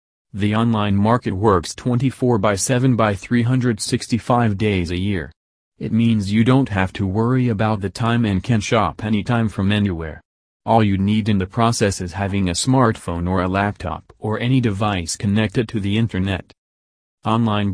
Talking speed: 165 wpm